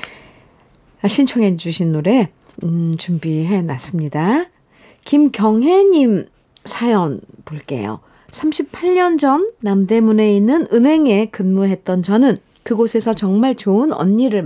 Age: 50-69